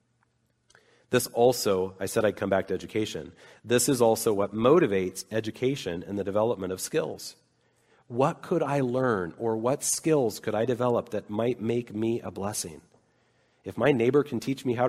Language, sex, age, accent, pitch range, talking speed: English, male, 40-59, American, 110-155 Hz, 175 wpm